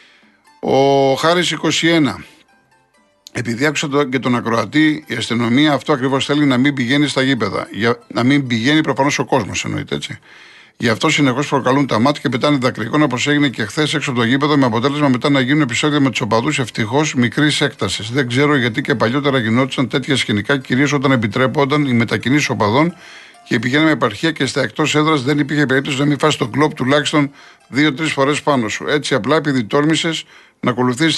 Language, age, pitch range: Greek, 50-69, 120-150 Hz